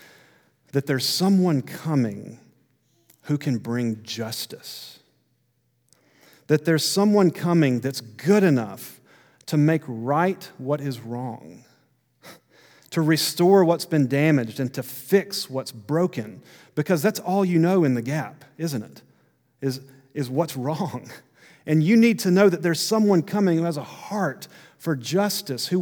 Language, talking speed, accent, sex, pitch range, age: English, 140 wpm, American, male, 130-170 Hz, 40-59